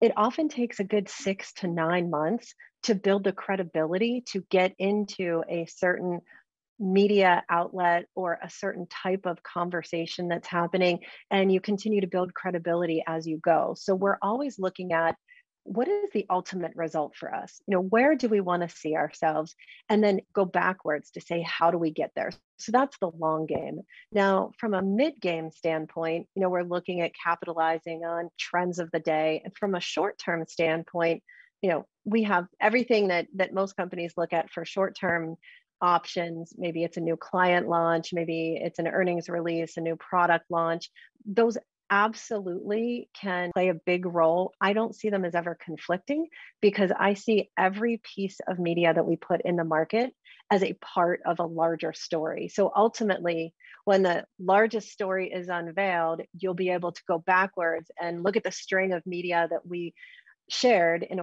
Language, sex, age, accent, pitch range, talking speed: English, female, 40-59, American, 170-200 Hz, 180 wpm